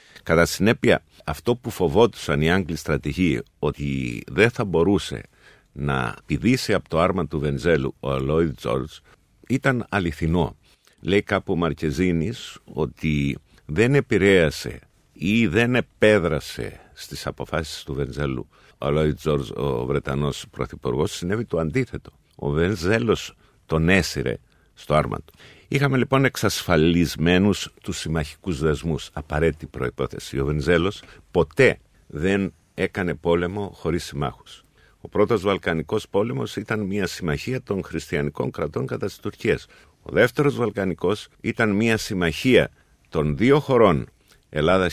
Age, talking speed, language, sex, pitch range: 50-69, 125 wpm, Greek, male, 75-105 Hz